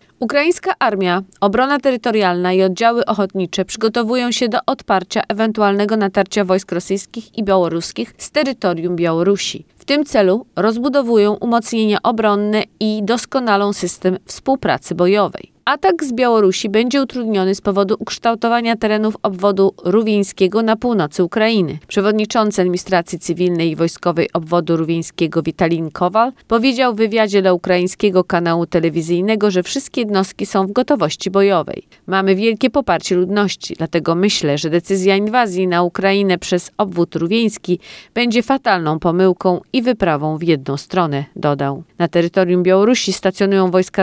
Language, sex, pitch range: Polish, female, 175-220 Hz